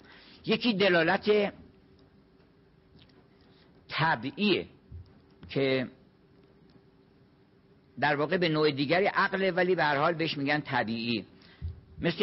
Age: 60-79